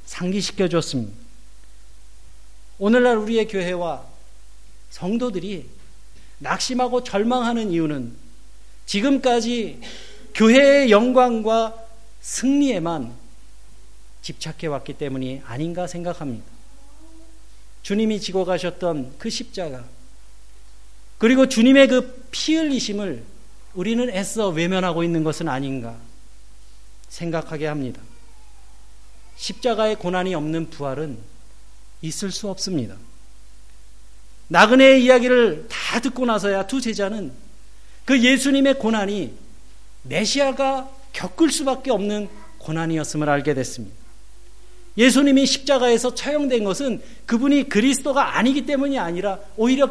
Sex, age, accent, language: male, 40-59, native, Korean